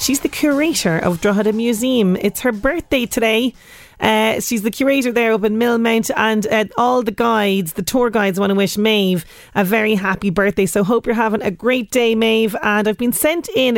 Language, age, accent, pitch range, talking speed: English, 30-49, Irish, 195-235 Hz, 205 wpm